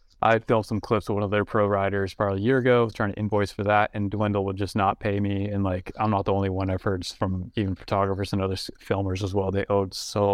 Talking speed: 275 wpm